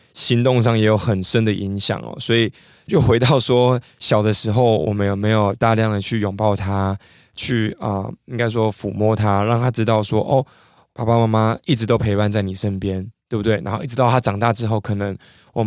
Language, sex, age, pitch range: Chinese, male, 20-39, 105-125 Hz